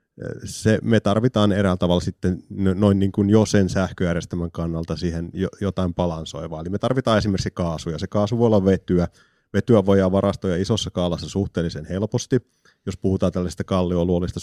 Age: 30-49